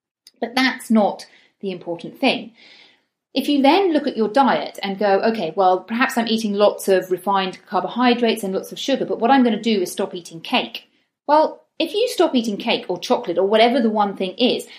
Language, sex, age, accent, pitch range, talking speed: English, female, 40-59, British, 190-245 Hz, 210 wpm